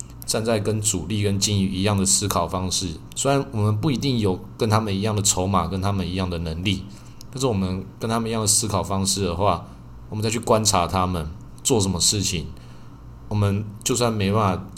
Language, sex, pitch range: Chinese, male, 85-100 Hz